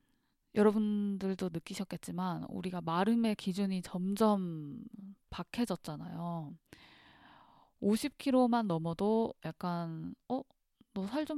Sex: female